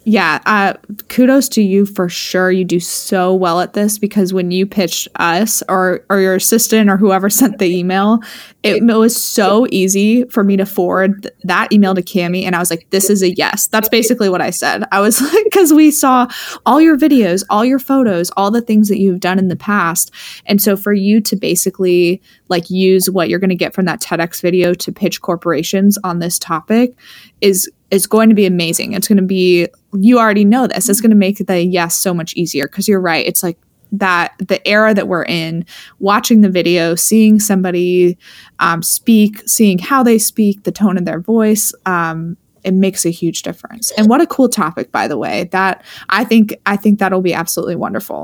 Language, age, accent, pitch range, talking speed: English, 20-39, American, 180-220 Hz, 210 wpm